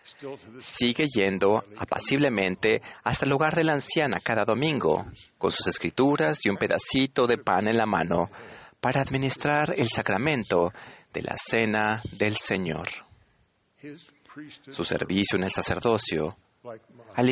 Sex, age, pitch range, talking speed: male, 40-59, 100-140 Hz, 130 wpm